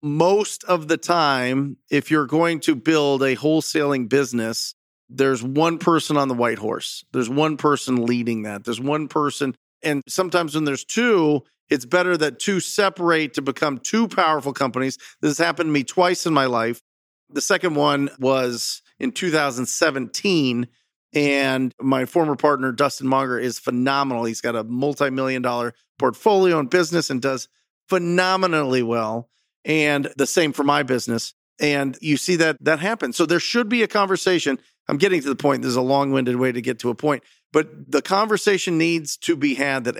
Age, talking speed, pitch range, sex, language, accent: 40-59, 175 wpm, 130-165 Hz, male, English, American